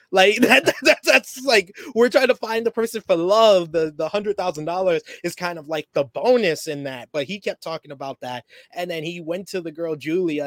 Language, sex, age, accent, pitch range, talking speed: English, male, 20-39, American, 145-210 Hz, 230 wpm